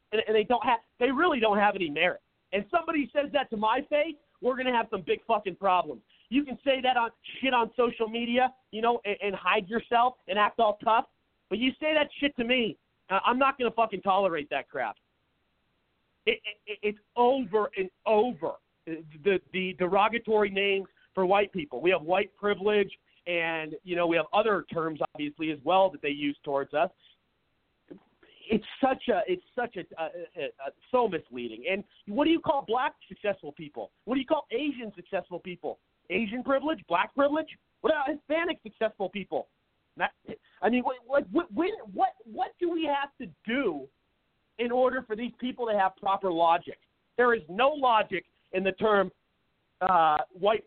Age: 40-59